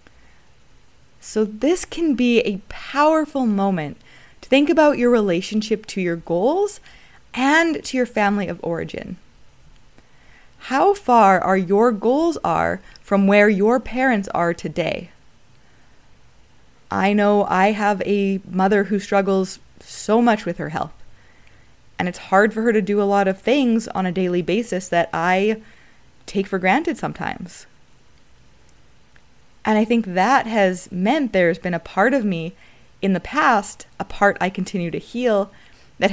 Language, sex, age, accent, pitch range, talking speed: English, female, 20-39, American, 190-245 Hz, 150 wpm